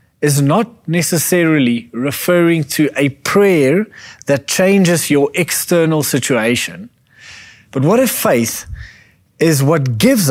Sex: male